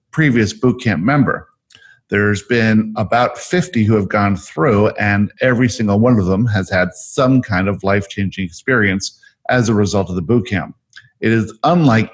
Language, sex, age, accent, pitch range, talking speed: English, male, 50-69, American, 105-130 Hz, 170 wpm